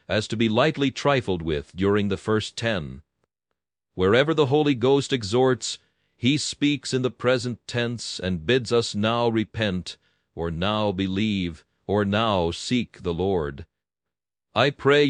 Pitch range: 95-120 Hz